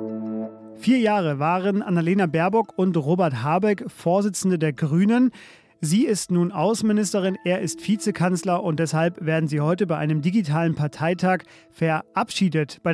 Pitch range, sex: 160-205 Hz, male